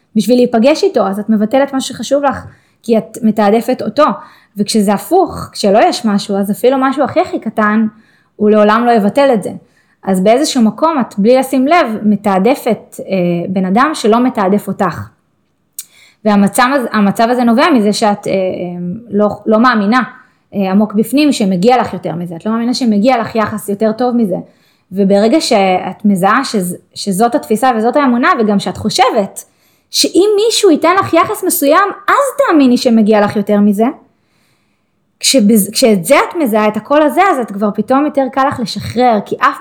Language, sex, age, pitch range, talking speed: Hebrew, female, 20-39, 210-275 Hz, 165 wpm